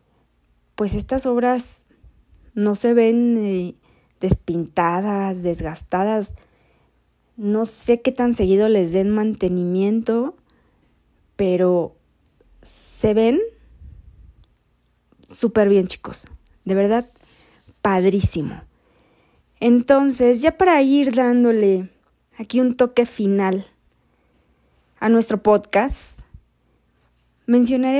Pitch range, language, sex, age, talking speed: 195-245 Hz, Spanish, female, 20-39, 85 wpm